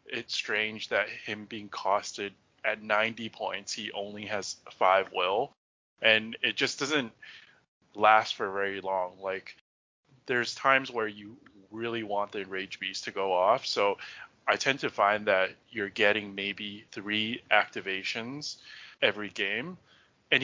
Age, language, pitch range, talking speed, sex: 20-39, English, 100-115 Hz, 145 wpm, male